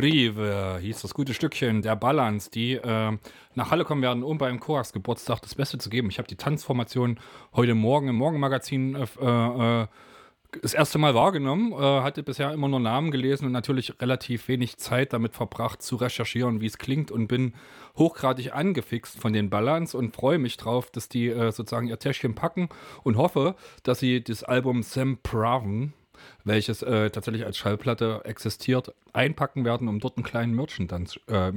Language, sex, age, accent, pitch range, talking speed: German, male, 30-49, German, 100-130 Hz, 175 wpm